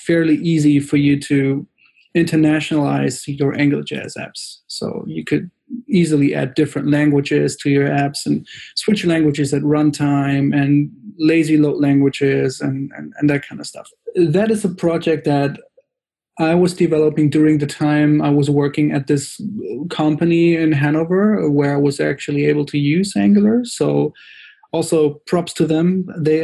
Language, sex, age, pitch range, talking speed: English, male, 30-49, 145-170 Hz, 155 wpm